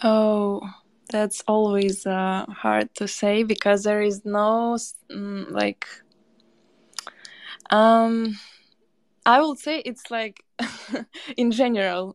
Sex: female